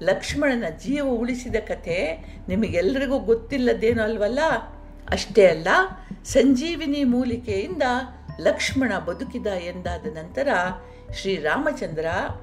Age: 50-69